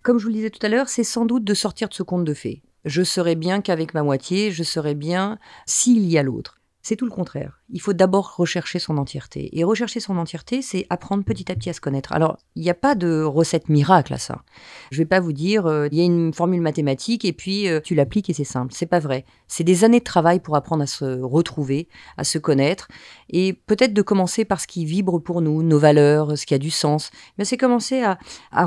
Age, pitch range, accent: 40-59, 155-200 Hz, French